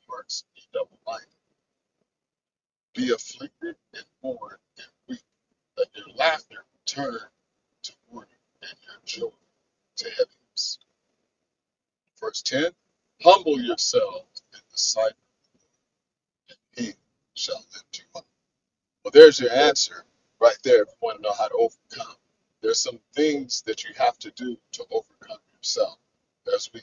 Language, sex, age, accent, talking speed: English, male, 50-69, American, 140 wpm